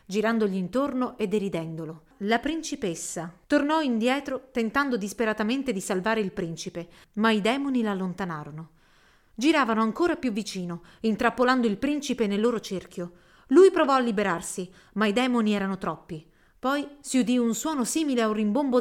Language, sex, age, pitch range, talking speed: Italian, female, 30-49, 185-250 Hz, 145 wpm